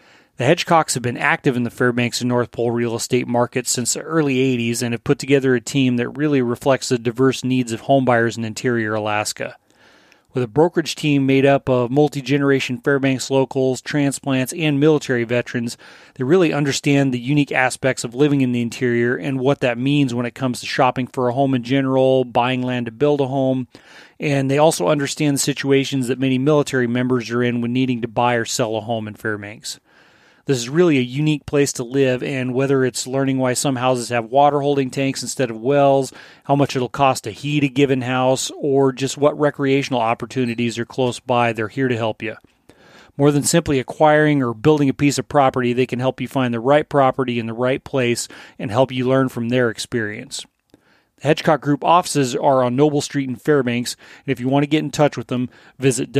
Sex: male